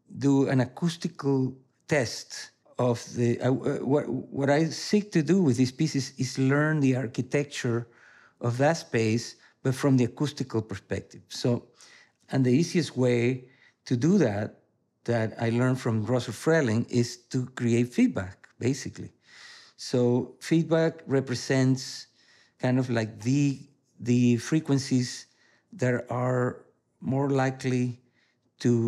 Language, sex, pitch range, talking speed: English, male, 115-140 Hz, 125 wpm